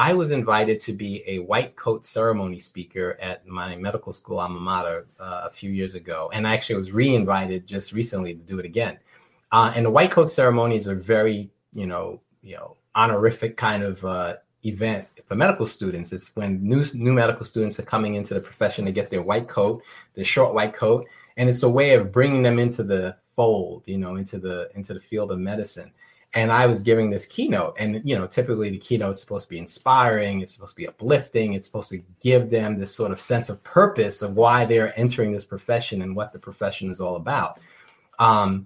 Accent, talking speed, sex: American, 215 wpm, male